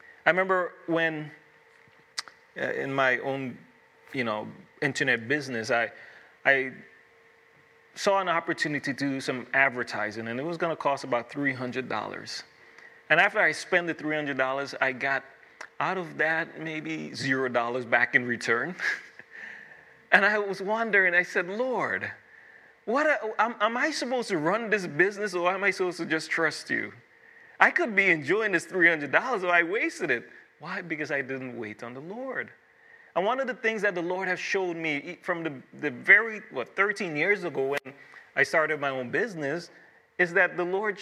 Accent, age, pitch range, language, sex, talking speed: American, 30-49, 145-220 Hz, English, male, 175 wpm